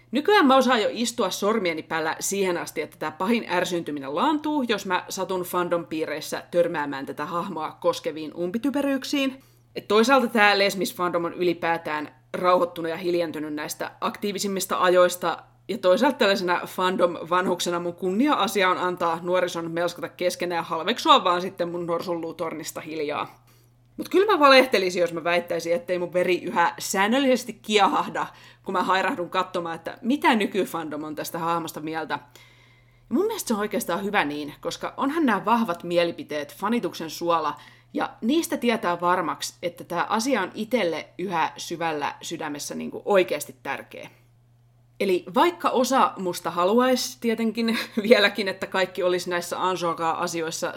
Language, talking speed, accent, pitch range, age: Finnish, 140 wpm, native, 165-210 Hz, 30-49